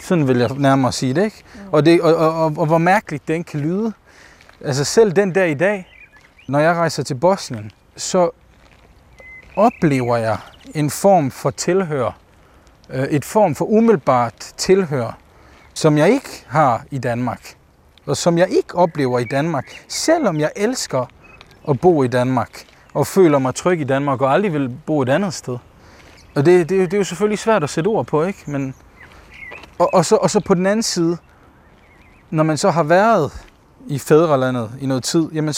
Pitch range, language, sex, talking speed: 125-180 Hz, Danish, male, 180 wpm